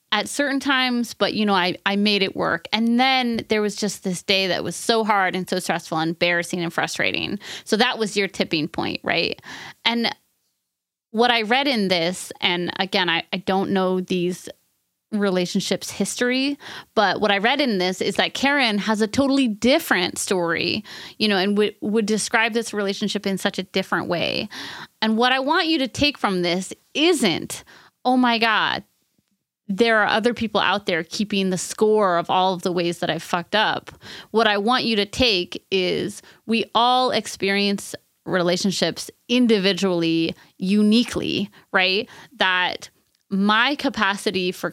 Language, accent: English, American